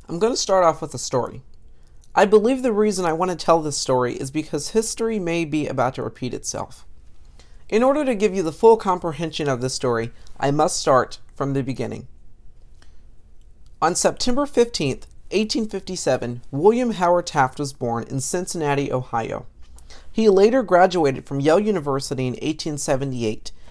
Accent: American